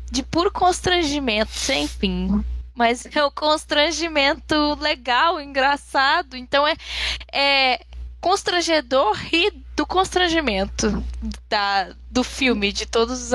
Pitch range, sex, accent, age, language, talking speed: 205-285 Hz, female, Brazilian, 10-29, Portuguese, 110 wpm